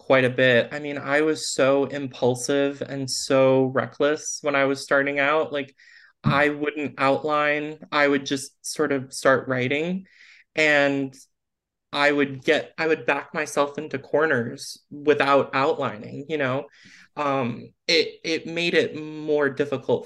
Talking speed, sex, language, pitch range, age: 145 wpm, male, English, 130-145 Hz, 20-39